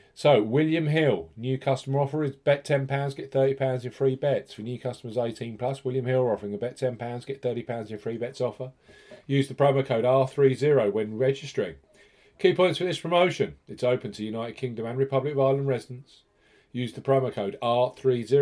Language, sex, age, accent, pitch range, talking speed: English, male, 40-59, British, 115-135 Hz, 185 wpm